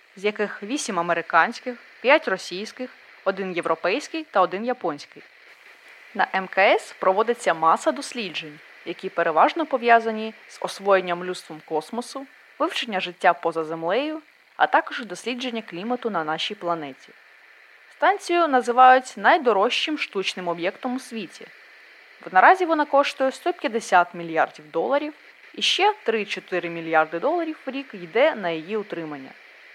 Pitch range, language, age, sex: 175-260 Hz, Ukrainian, 20-39, female